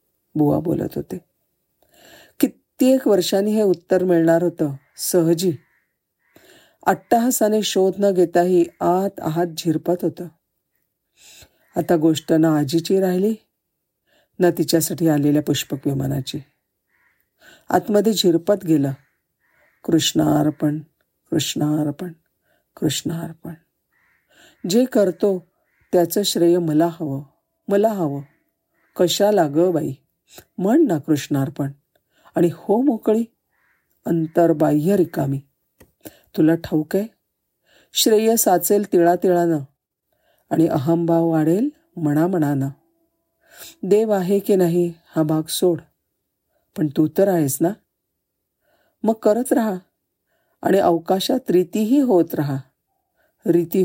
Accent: native